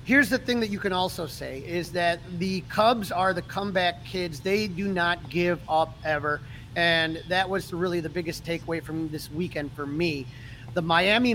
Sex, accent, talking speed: male, American, 190 wpm